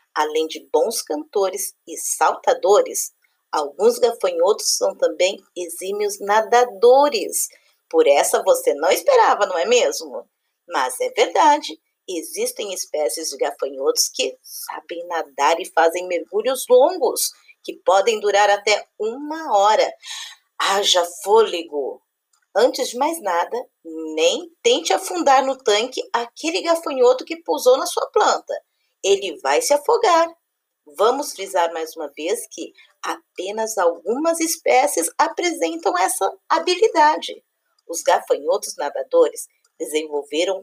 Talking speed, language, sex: 115 wpm, Portuguese, female